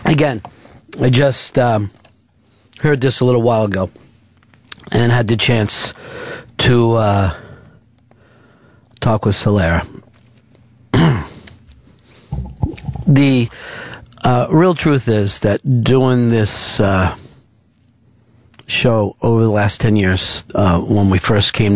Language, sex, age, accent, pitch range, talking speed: English, male, 50-69, American, 105-125 Hz, 110 wpm